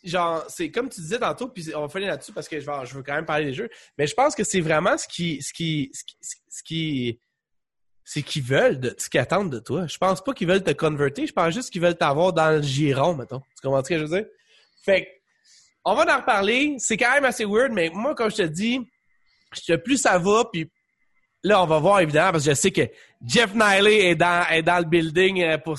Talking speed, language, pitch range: 235 wpm, French, 155-205 Hz